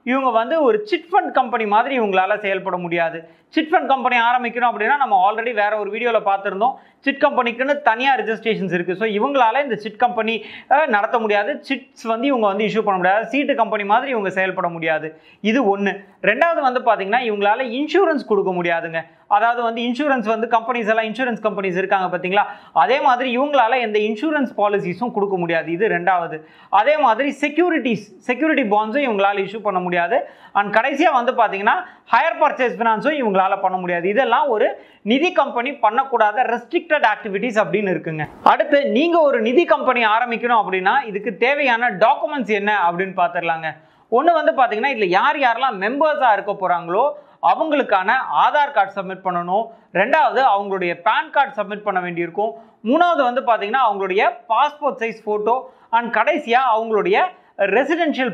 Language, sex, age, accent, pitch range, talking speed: Tamil, male, 30-49, native, 200-265 Hz, 135 wpm